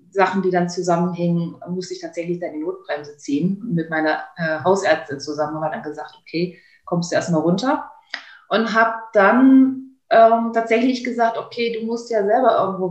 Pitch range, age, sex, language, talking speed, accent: 175-215 Hz, 30-49, female, German, 170 wpm, German